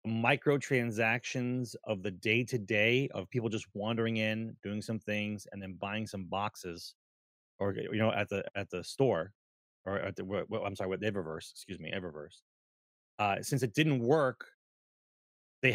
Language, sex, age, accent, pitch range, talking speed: English, male, 30-49, American, 100-130 Hz, 170 wpm